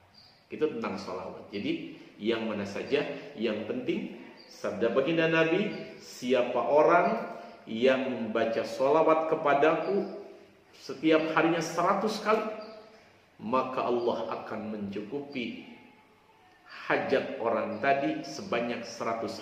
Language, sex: Indonesian, male